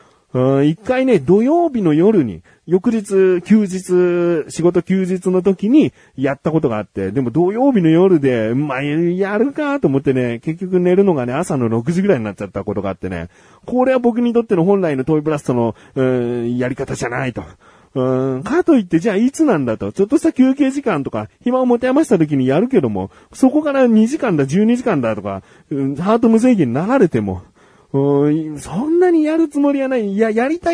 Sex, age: male, 40-59